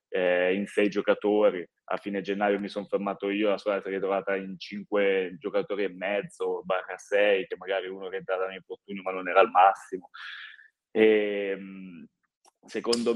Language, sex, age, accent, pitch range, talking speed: Italian, male, 20-39, native, 100-125 Hz, 165 wpm